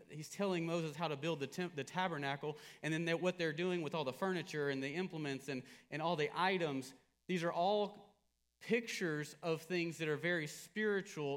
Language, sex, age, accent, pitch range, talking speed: English, male, 40-59, American, 150-185 Hz, 200 wpm